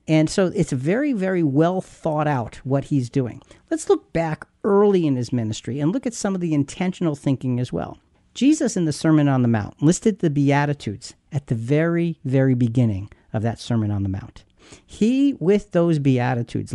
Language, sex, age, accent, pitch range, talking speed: English, male, 50-69, American, 130-180 Hz, 190 wpm